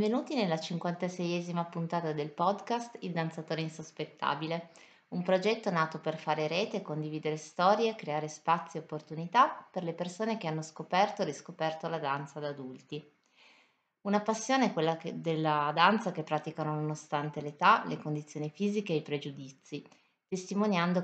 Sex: female